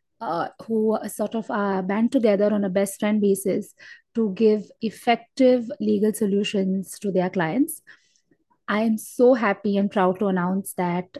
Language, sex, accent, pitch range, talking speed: English, female, Indian, 200-255 Hz, 155 wpm